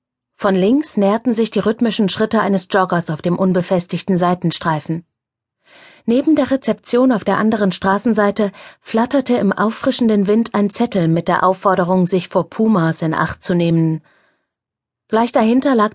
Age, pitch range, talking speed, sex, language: 30-49, 175-220 Hz, 145 wpm, female, German